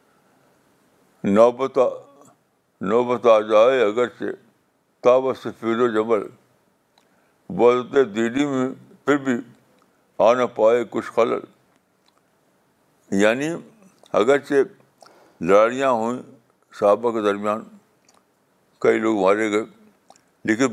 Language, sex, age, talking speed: Urdu, male, 60-79, 95 wpm